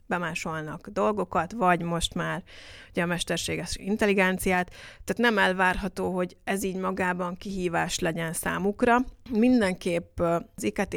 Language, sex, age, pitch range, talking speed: Hungarian, female, 30-49, 175-205 Hz, 120 wpm